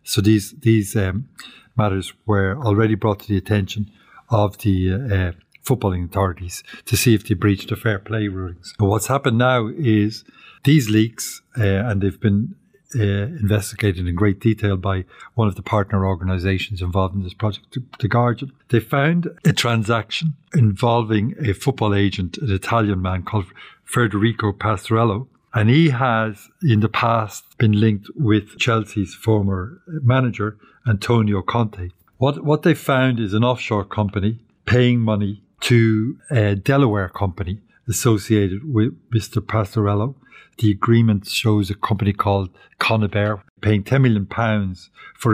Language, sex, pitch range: English, male, 100-120 Hz